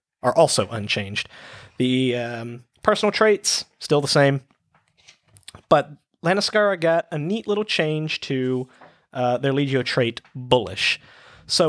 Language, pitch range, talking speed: English, 120-155 Hz, 125 wpm